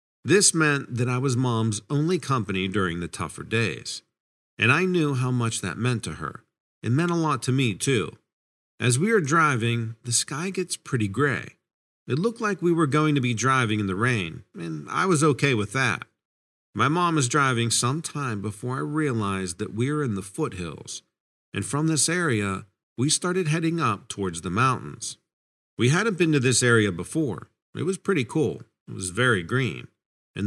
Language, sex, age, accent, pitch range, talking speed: English, male, 50-69, American, 105-150 Hz, 190 wpm